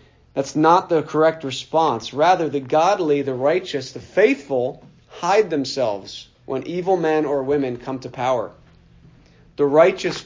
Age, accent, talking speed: 40-59, American, 140 wpm